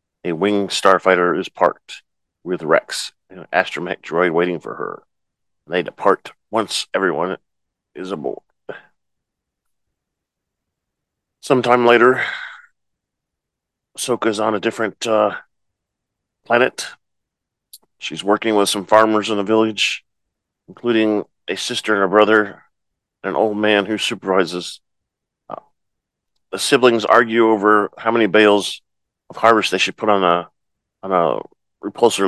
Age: 40-59